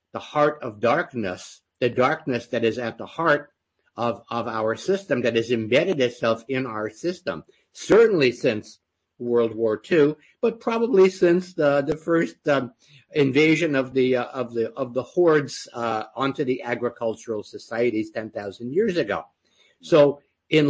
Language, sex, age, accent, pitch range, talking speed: English, male, 60-79, American, 115-150 Hz, 155 wpm